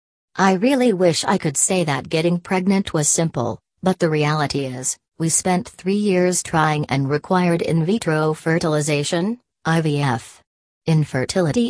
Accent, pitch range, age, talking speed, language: American, 145-175 Hz, 40-59, 140 wpm, English